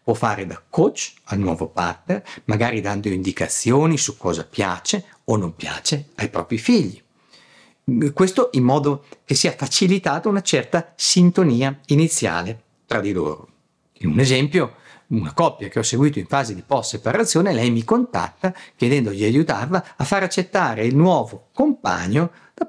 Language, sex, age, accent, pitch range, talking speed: Italian, male, 50-69, native, 115-170 Hz, 150 wpm